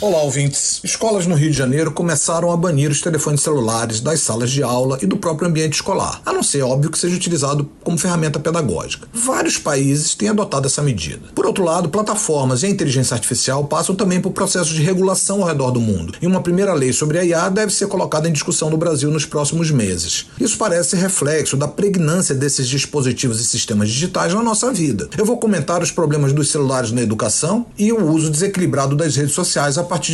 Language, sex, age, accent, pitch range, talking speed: Portuguese, male, 40-59, Brazilian, 140-185 Hz, 205 wpm